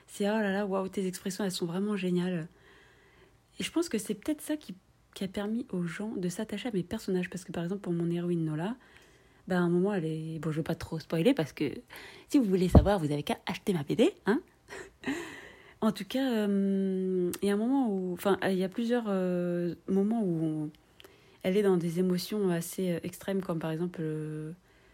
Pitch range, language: 170-205 Hz, French